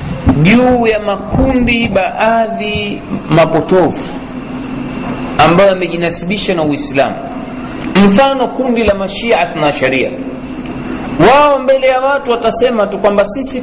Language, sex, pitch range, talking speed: Swahili, male, 170-245 Hz, 105 wpm